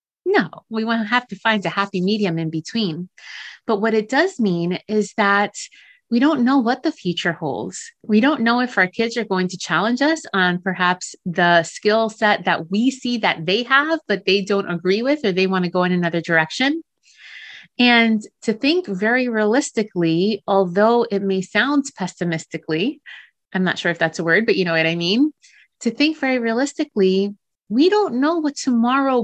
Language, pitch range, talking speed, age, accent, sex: English, 180-235 Hz, 190 wpm, 30-49, American, female